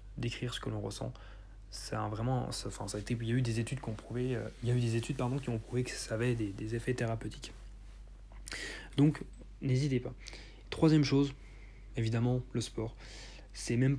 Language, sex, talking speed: French, male, 210 wpm